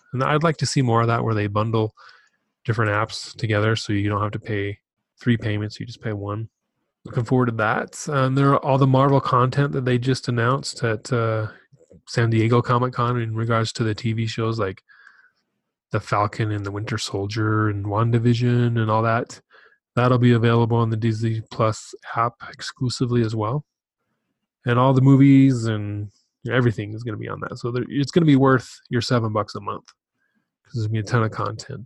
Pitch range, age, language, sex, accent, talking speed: 110-130 Hz, 20-39, English, male, American, 200 wpm